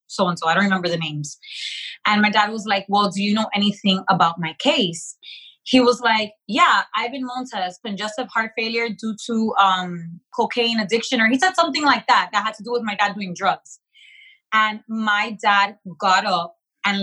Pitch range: 195-245 Hz